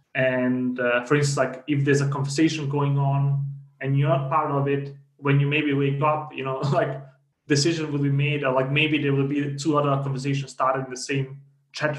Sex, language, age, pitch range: male, English, 30-49, 135-150 Hz